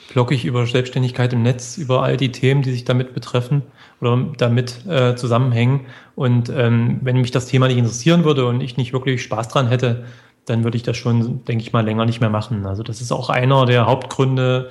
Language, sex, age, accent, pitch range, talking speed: German, male, 30-49, German, 125-140 Hz, 215 wpm